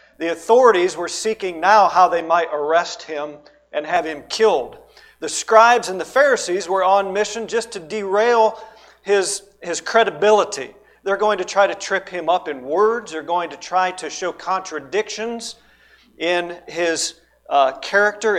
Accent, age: American, 40-59